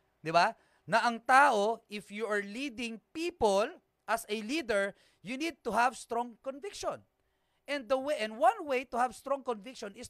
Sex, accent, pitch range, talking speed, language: male, native, 180-255 Hz, 170 wpm, Filipino